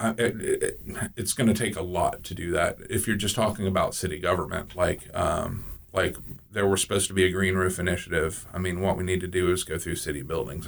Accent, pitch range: American, 90-100 Hz